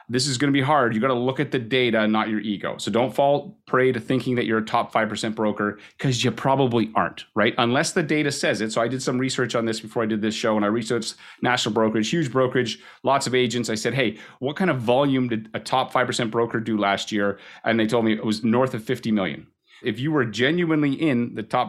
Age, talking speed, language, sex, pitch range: 30-49, 255 wpm, English, male, 110-130 Hz